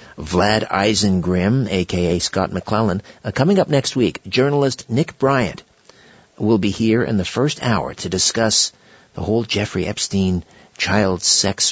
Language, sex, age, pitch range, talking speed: English, male, 50-69, 90-115 Hz, 145 wpm